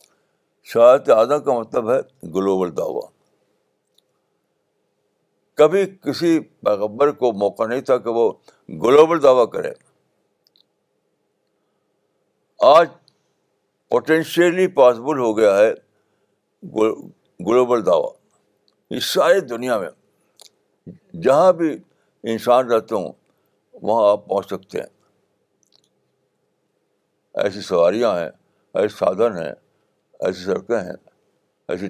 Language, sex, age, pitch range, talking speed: Urdu, male, 60-79, 105-150 Hz, 95 wpm